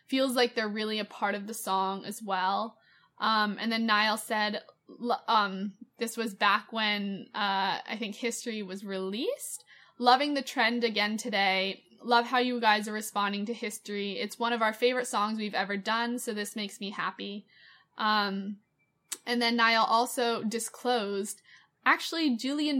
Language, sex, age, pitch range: English, female, 20-39, 205-240 Hz